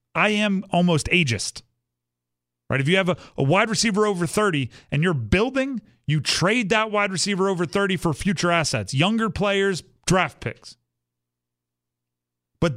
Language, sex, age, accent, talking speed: English, male, 40-59, American, 150 wpm